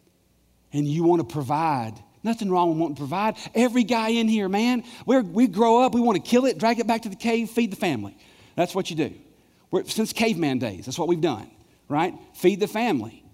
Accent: American